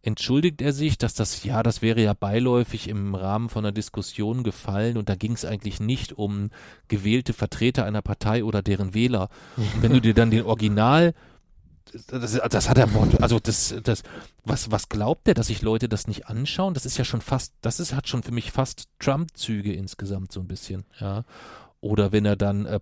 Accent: German